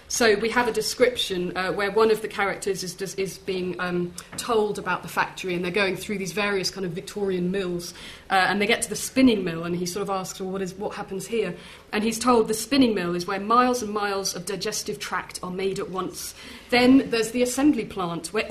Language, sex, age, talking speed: English, female, 30-49, 230 wpm